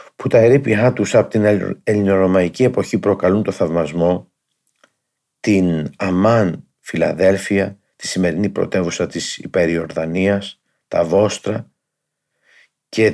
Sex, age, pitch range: male, 50-69, 85-110 Hz